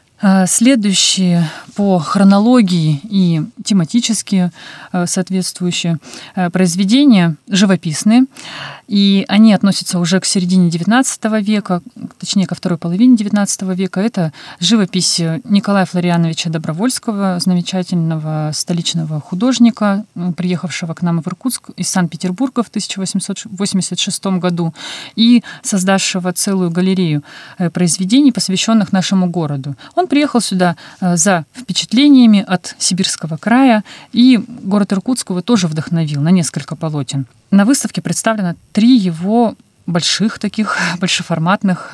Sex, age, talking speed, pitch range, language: female, 30-49, 105 wpm, 175-215 Hz, Russian